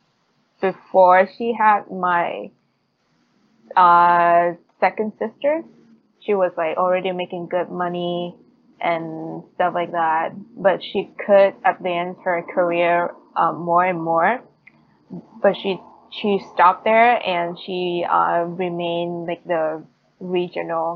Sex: female